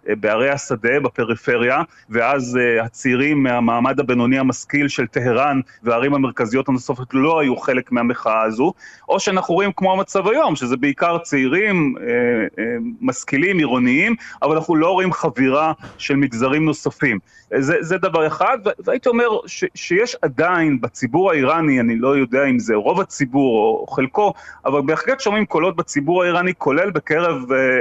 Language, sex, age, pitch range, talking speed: Hebrew, male, 30-49, 135-185 Hz, 140 wpm